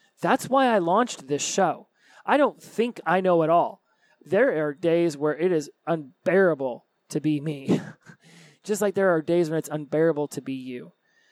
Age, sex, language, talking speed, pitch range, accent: 30-49, male, English, 180 wpm, 140-175 Hz, American